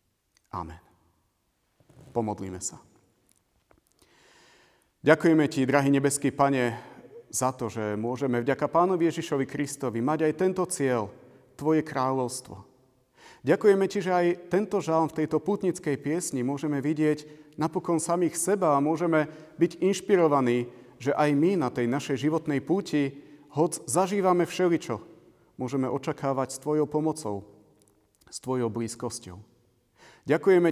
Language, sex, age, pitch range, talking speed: Slovak, male, 40-59, 120-155 Hz, 120 wpm